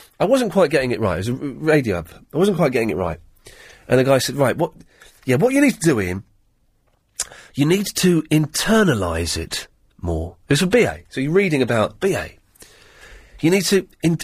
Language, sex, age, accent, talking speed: English, male, 30-49, British, 200 wpm